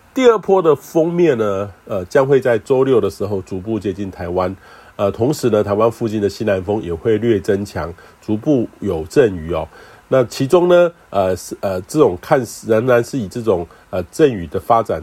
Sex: male